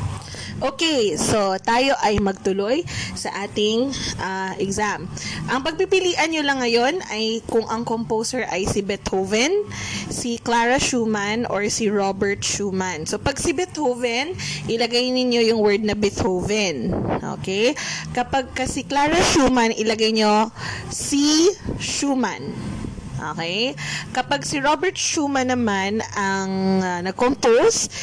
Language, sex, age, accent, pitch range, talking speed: Filipino, female, 20-39, native, 200-255 Hz, 120 wpm